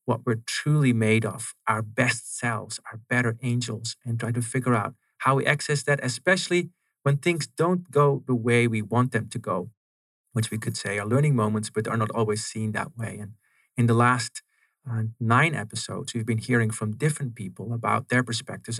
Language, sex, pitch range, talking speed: English, male, 110-125 Hz, 200 wpm